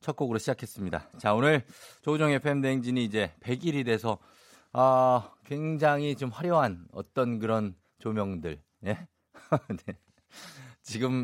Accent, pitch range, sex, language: native, 110-155 Hz, male, Korean